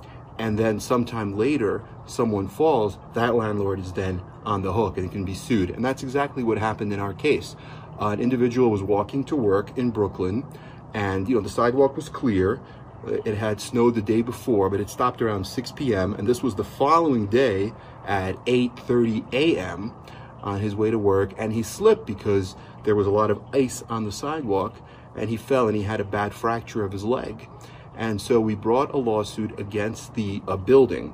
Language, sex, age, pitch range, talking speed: English, male, 30-49, 100-125 Hz, 195 wpm